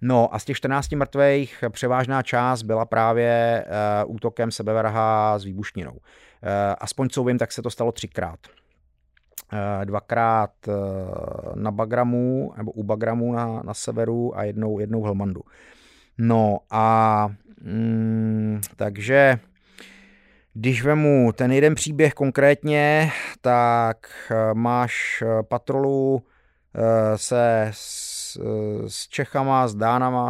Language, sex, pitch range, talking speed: Czech, male, 105-120 Hz, 115 wpm